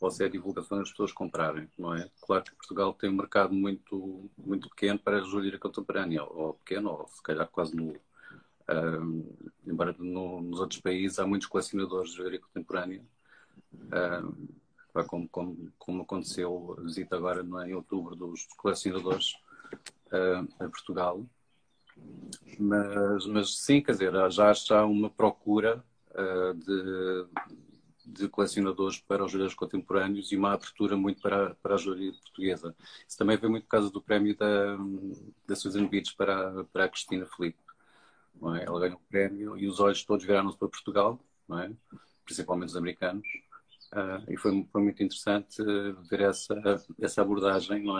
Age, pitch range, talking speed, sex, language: 40-59, 90-100 Hz, 160 wpm, male, Portuguese